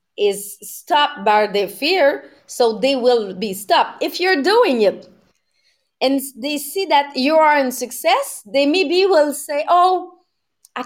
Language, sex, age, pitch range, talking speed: English, female, 30-49, 225-300 Hz, 155 wpm